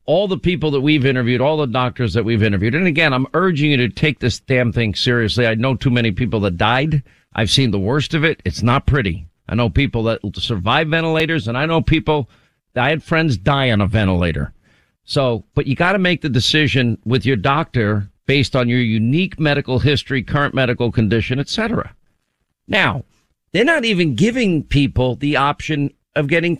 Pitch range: 120-175 Hz